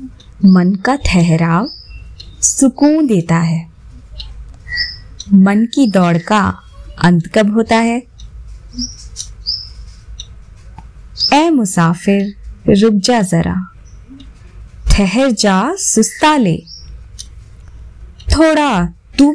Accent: native